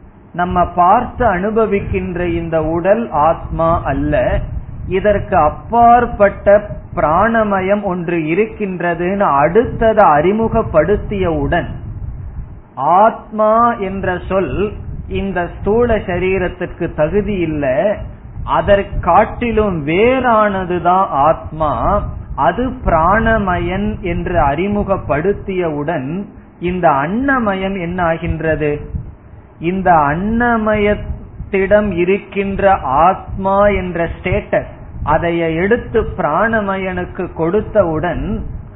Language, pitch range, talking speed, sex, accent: Tamil, 160-200 Hz, 65 wpm, male, native